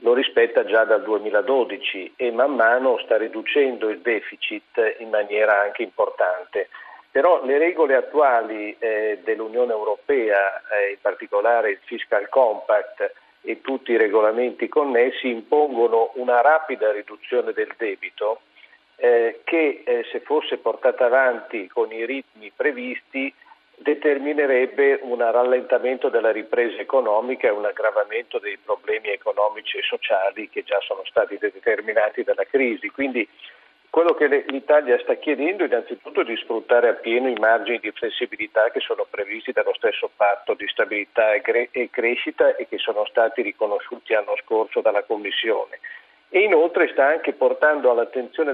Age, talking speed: 50-69, 140 wpm